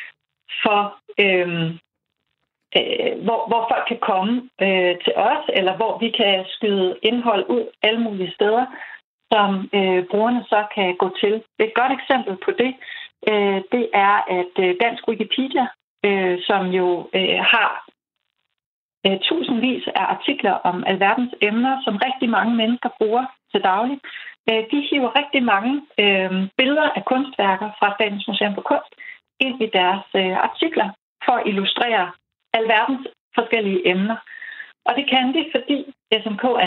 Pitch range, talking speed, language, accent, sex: 200-260 Hz, 145 wpm, Danish, native, female